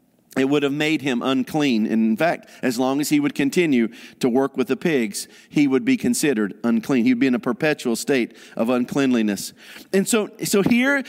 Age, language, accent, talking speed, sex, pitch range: 50-69, English, American, 195 wpm, male, 150-220 Hz